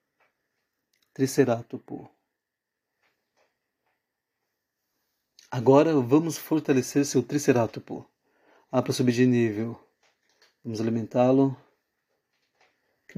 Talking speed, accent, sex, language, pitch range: 65 wpm, Brazilian, male, Portuguese, 125-140 Hz